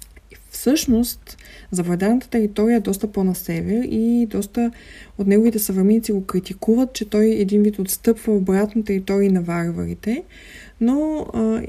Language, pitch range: Bulgarian, 180-225 Hz